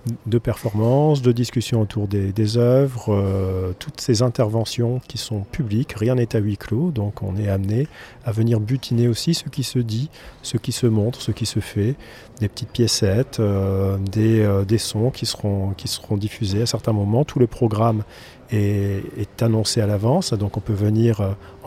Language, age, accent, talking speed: French, 40-59, French, 190 wpm